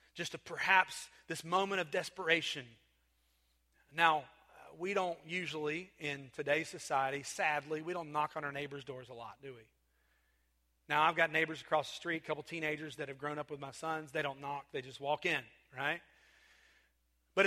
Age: 30-49